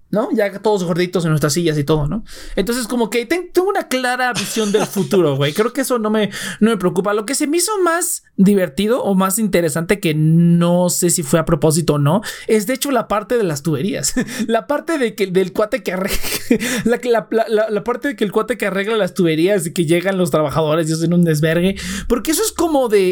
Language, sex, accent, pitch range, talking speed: Spanish, male, Mexican, 185-250 Hz, 235 wpm